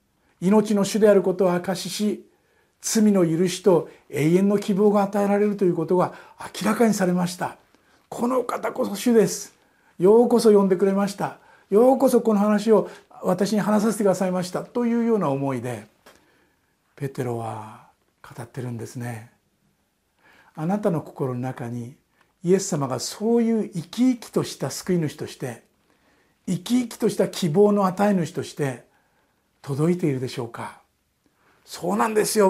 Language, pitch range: Japanese, 155-205 Hz